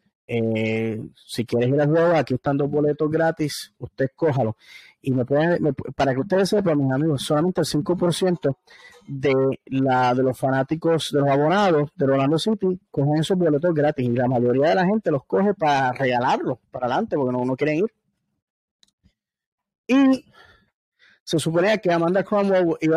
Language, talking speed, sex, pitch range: English, 170 wpm, male, 125-155 Hz